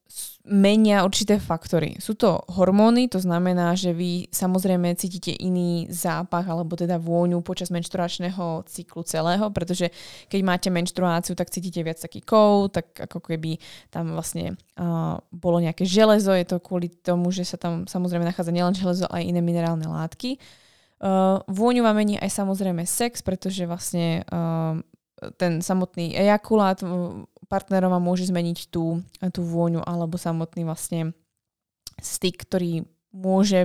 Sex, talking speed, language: female, 145 wpm, Slovak